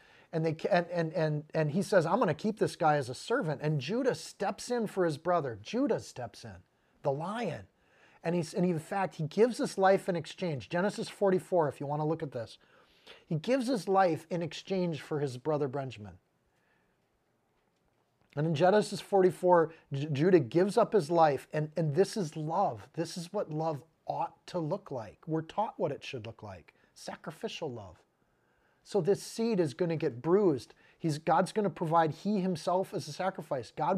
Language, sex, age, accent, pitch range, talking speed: English, male, 40-59, American, 150-195 Hz, 180 wpm